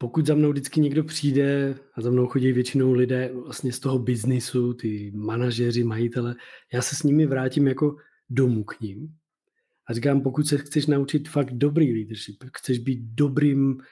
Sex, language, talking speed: male, Czech, 175 wpm